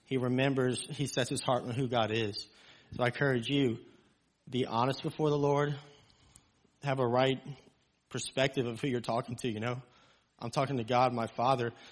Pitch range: 120-140 Hz